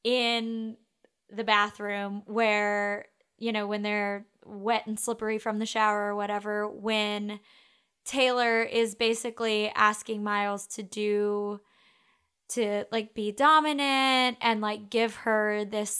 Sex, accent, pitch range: female, American, 205-235 Hz